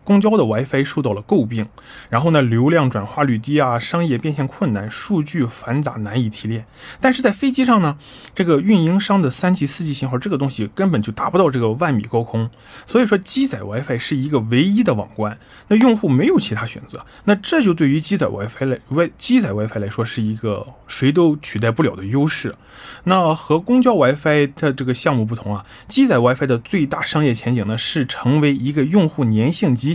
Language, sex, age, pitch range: Korean, male, 20-39, 115-155 Hz